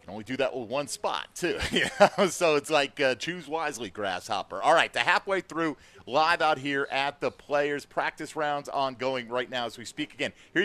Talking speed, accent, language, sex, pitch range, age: 215 wpm, American, English, male, 125-155 Hz, 40-59